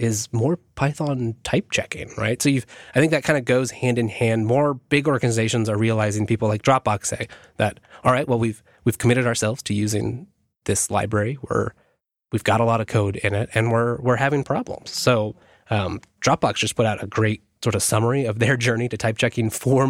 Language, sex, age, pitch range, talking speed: English, male, 20-39, 110-140 Hz, 210 wpm